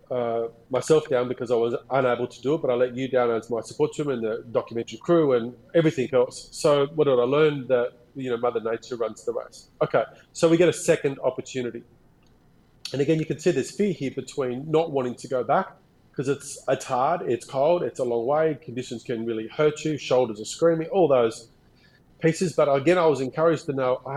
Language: English